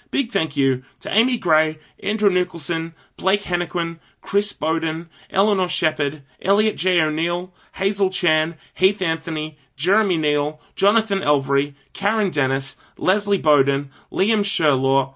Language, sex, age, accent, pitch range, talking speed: English, male, 30-49, Australian, 140-205 Hz, 125 wpm